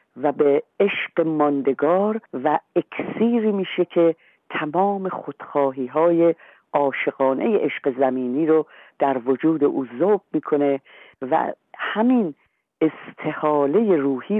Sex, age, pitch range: female, 50-69, 140-180 Hz